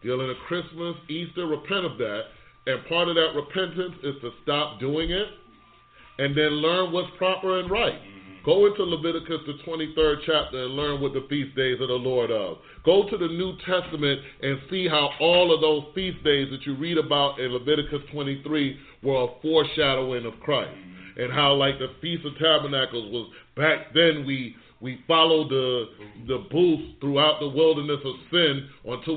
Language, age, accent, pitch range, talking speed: English, 30-49, American, 135-165 Hz, 180 wpm